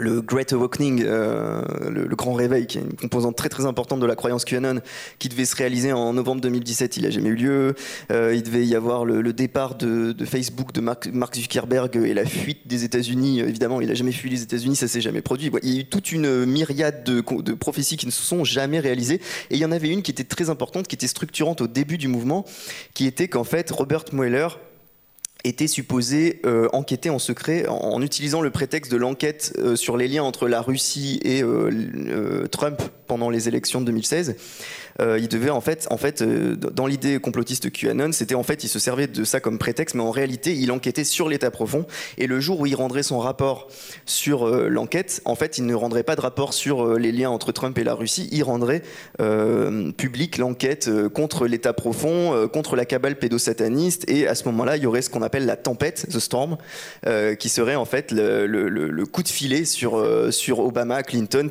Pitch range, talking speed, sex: 120-145 Hz, 225 wpm, male